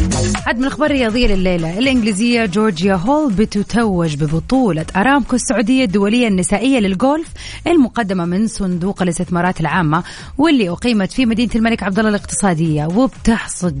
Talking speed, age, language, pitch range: 125 wpm, 30-49, Arabic, 180-245 Hz